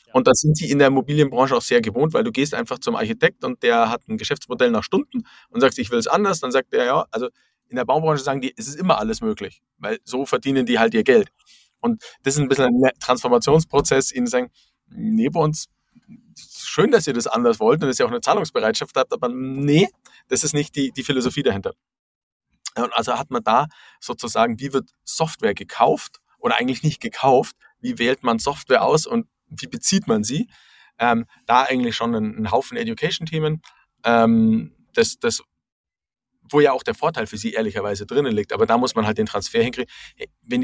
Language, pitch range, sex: German, 115-160 Hz, male